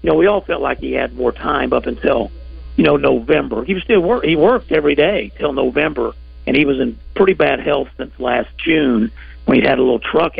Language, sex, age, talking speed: English, male, 50-69, 235 wpm